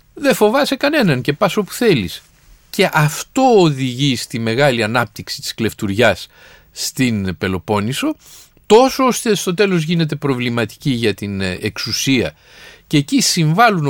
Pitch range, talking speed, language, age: 120-200 Hz, 125 wpm, Greek, 50-69